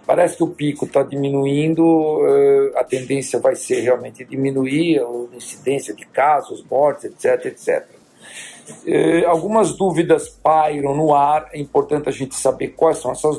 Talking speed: 145 wpm